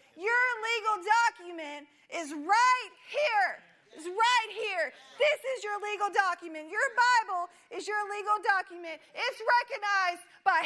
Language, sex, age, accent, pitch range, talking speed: English, female, 40-59, American, 340-450 Hz, 130 wpm